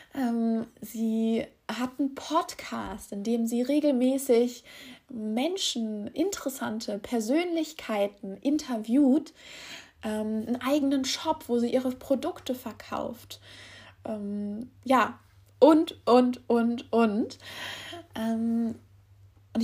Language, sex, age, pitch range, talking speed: German, female, 20-39, 220-290 Hz, 90 wpm